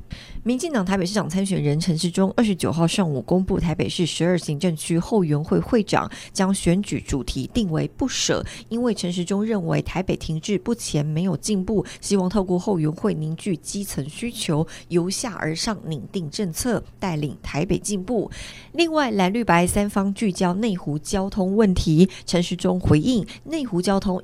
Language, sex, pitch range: Chinese, female, 160-200 Hz